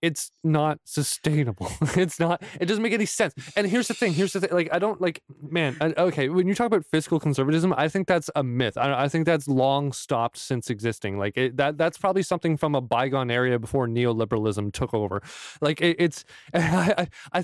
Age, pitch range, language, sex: 20-39, 125-165 Hz, English, male